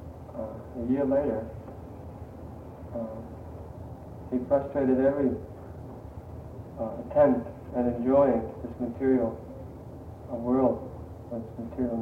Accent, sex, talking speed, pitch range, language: American, male, 95 wpm, 95-130 Hz, English